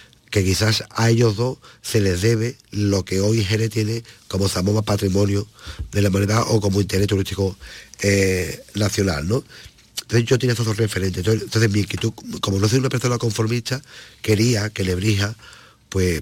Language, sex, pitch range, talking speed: Spanish, male, 100-115 Hz, 160 wpm